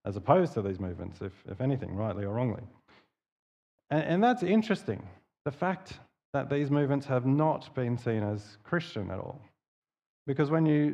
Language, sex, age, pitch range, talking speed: English, male, 30-49, 105-145 Hz, 170 wpm